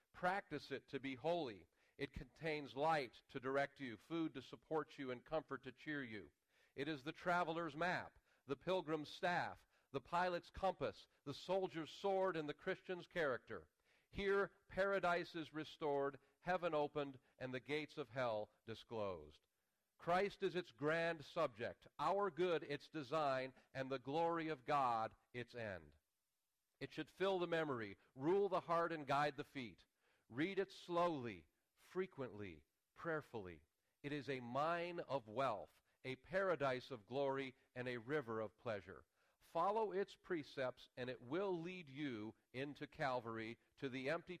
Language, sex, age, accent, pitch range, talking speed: English, male, 40-59, American, 125-165 Hz, 150 wpm